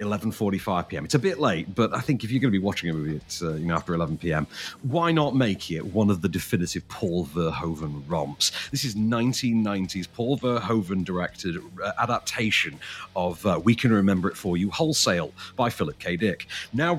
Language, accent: English, British